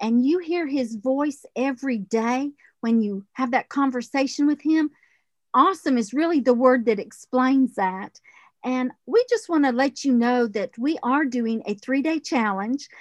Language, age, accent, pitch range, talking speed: English, 50-69, American, 235-295 Hz, 165 wpm